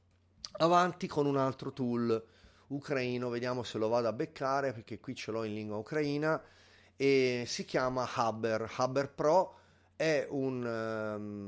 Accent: native